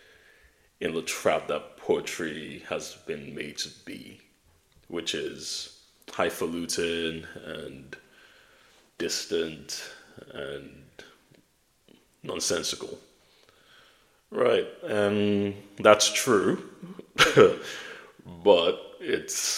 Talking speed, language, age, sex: 70 wpm, English, 30-49, male